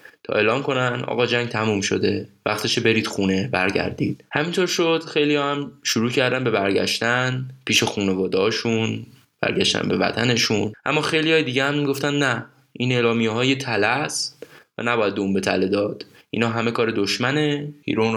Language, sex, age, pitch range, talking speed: Persian, male, 10-29, 105-135 Hz, 150 wpm